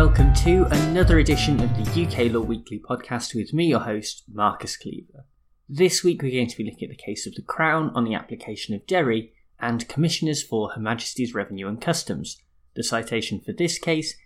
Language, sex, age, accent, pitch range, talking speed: English, male, 20-39, British, 110-160 Hz, 200 wpm